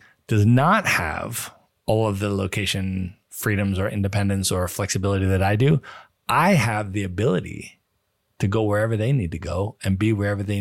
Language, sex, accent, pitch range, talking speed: English, male, American, 110-150 Hz, 170 wpm